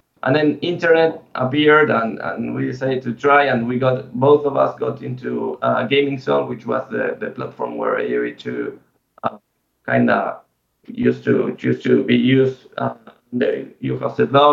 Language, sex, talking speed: English, male, 170 wpm